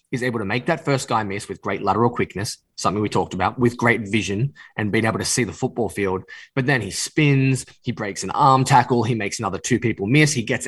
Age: 10-29